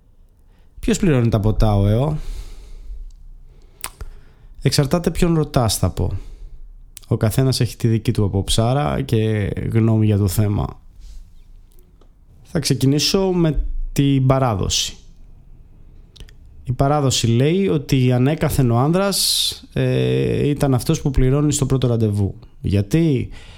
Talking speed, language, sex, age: 110 wpm, Greek, male, 20-39